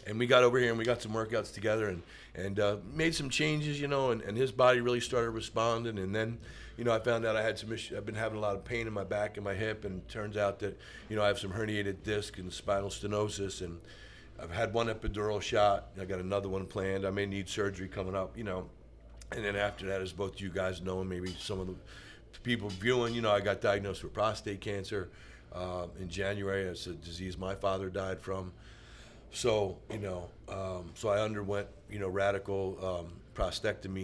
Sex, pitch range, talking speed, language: male, 95-110 Hz, 230 wpm, English